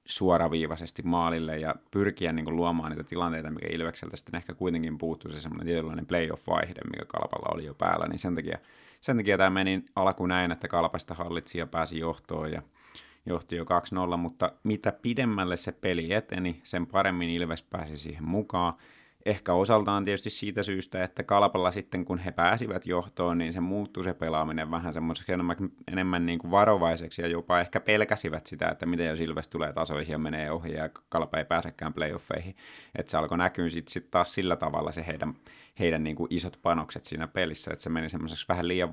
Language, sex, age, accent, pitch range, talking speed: Finnish, male, 30-49, native, 80-95 Hz, 180 wpm